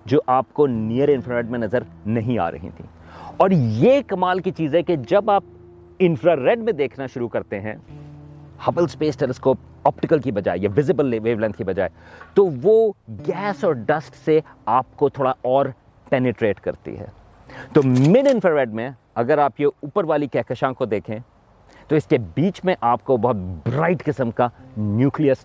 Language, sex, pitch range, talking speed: Urdu, male, 110-150 Hz, 160 wpm